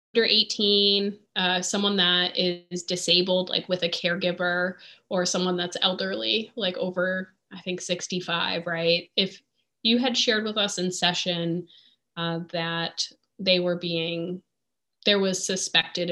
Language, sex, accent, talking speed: English, female, American, 135 wpm